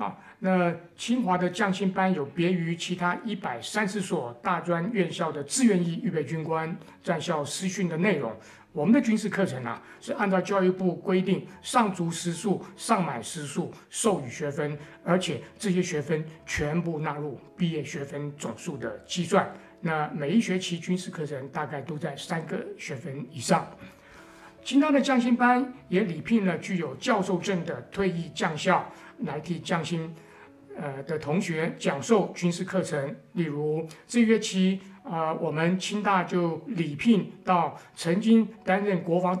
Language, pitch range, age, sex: Chinese, 160-195 Hz, 60-79, male